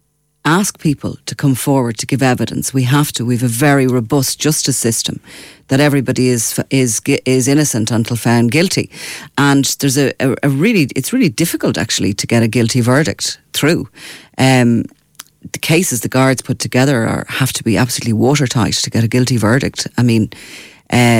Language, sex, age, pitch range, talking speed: English, female, 40-59, 120-145 Hz, 180 wpm